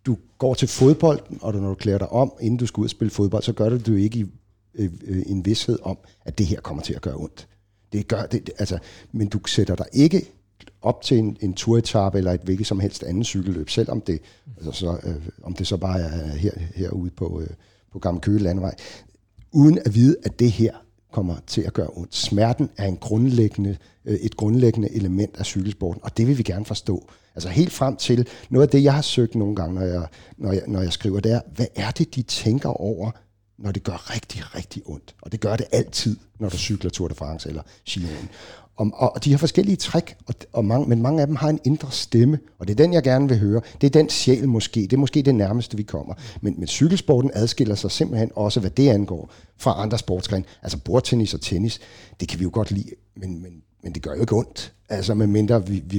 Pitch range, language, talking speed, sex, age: 95-120 Hz, Danish, 235 wpm, male, 60-79